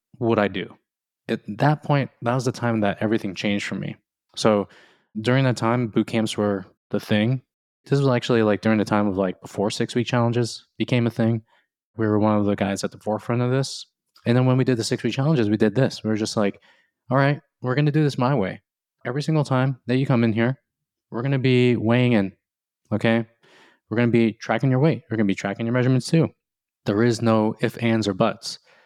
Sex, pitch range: male, 105-125 Hz